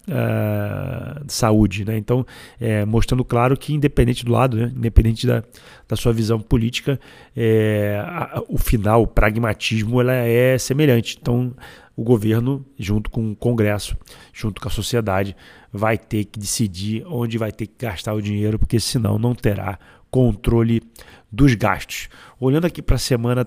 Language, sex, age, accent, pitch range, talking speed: Portuguese, male, 40-59, Brazilian, 110-130 Hz, 145 wpm